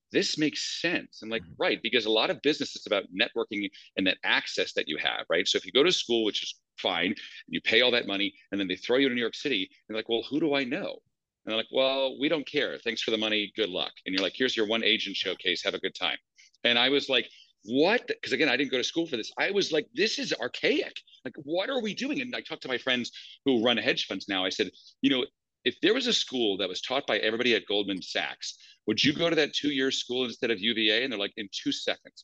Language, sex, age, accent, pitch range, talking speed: English, male, 40-59, American, 110-150 Hz, 275 wpm